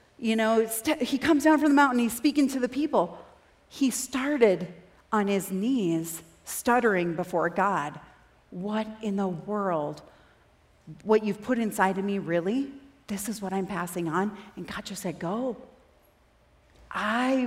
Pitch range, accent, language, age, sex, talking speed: 185-235 Hz, American, English, 40-59, female, 150 wpm